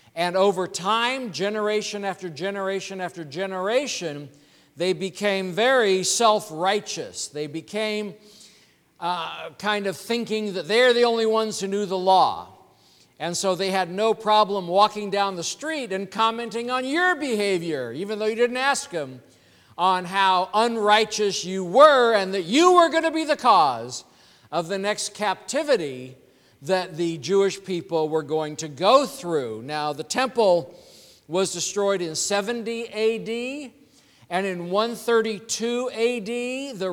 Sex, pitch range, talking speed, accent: male, 185-230 Hz, 145 wpm, American